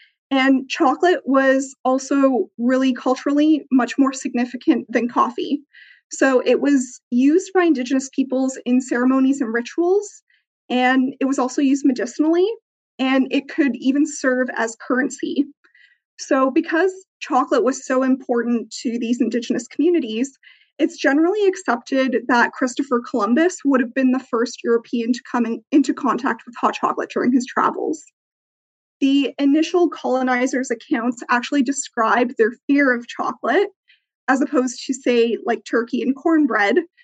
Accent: American